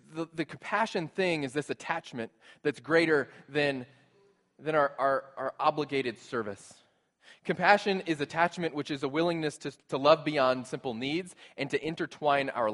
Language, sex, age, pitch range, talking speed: English, male, 20-39, 140-180 Hz, 155 wpm